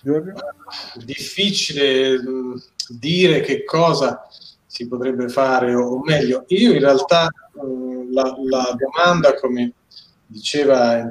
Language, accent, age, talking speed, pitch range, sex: Italian, native, 30-49, 105 wpm, 125-155 Hz, male